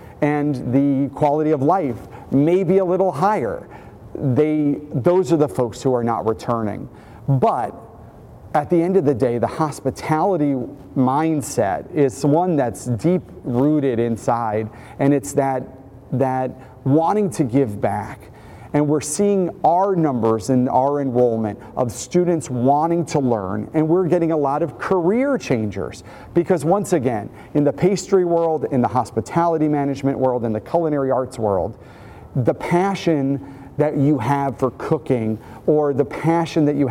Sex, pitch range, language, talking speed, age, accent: male, 120-150 Hz, English, 150 wpm, 40-59, American